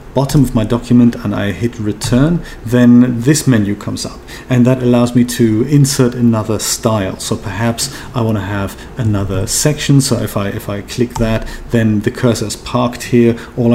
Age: 40-59